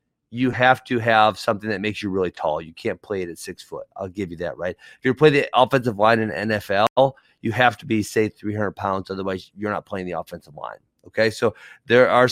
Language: English